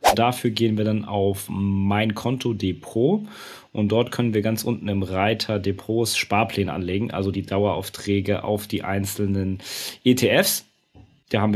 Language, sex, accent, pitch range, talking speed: German, male, German, 100-120 Hz, 145 wpm